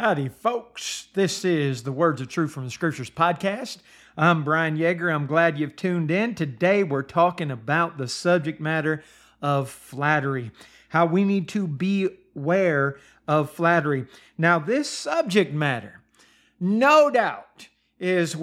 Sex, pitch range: male, 150-190 Hz